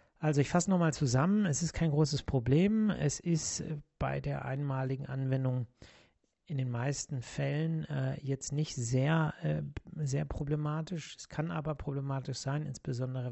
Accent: German